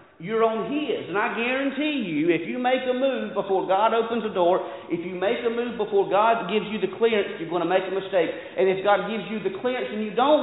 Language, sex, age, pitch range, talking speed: English, male, 40-59, 140-210 Hz, 255 wpm